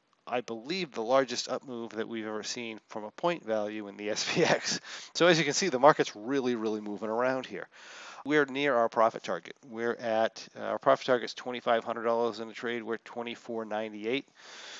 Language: English